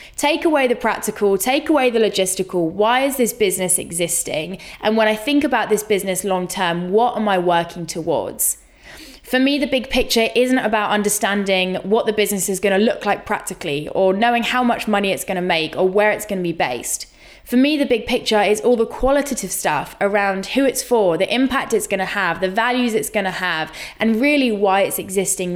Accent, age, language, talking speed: British, 20-39, English, 210 wpm